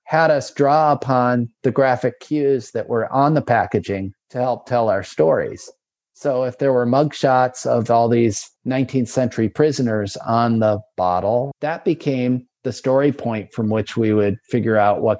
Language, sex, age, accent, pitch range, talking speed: Spanish, male, 40-59, American, 110-145 Hz, 170 wpm